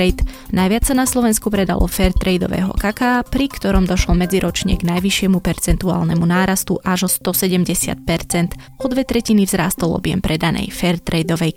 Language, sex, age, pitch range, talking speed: Slovak, female, 20-39, 180-210 Hz, 130 wpm